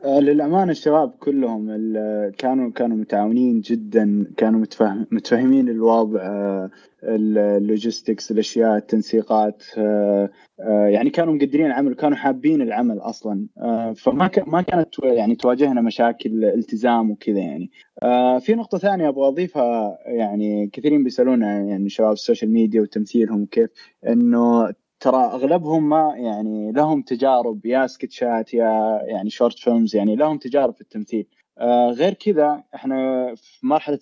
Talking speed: 120 wpm